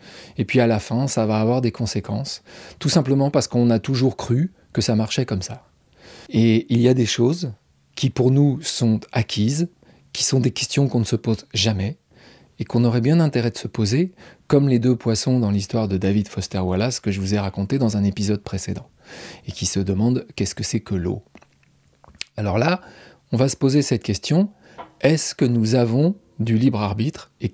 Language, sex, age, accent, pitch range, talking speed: French, male, 30-49, French, 105-135 Hz, 205 wpm